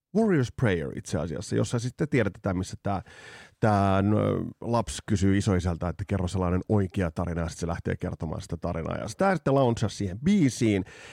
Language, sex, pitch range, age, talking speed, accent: Finnish, male, 100-145 Hz, 30-49, 155 wpm, native